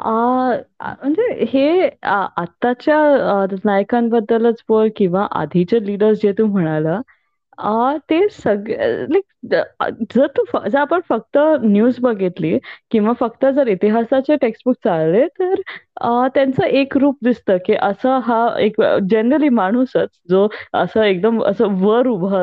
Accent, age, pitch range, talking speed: native, 20-39, 195-275 Hz, 120 wpm